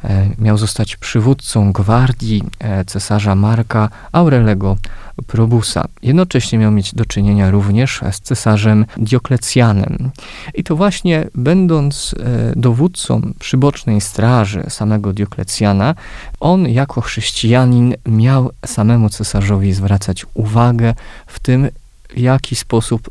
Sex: male